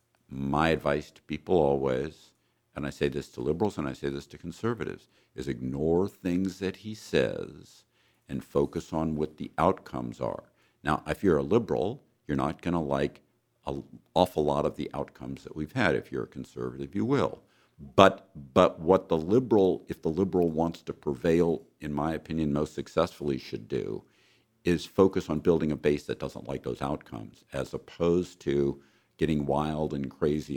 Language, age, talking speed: English, 50-69, 180 wpm